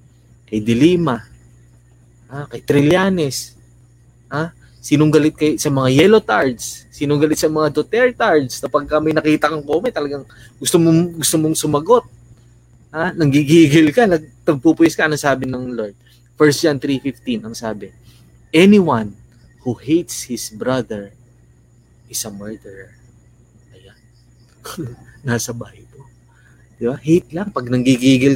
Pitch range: 120-150 Hz